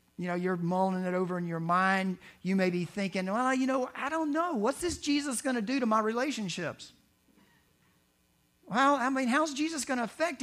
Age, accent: 50-69, American